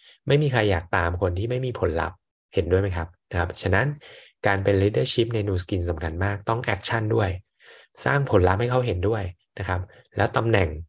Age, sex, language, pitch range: 20-39, male, Thai, 90-115 Hz